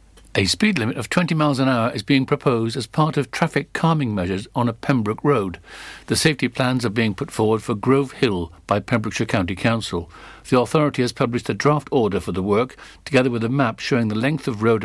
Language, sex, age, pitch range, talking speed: English, male, 60-79, 110-140 Hz, 220 wpm